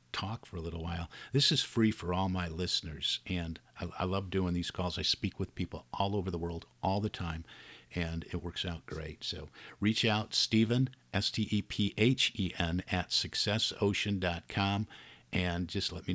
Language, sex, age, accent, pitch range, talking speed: English, male, 50-69, American, 85-110 Hz, 170 wpm